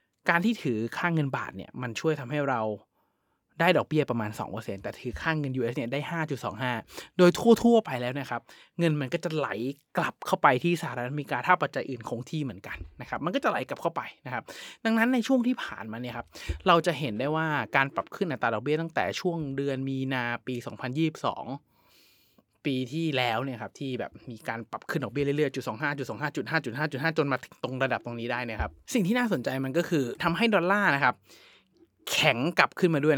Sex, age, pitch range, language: male, 20-39, 125-170 Hz, Thai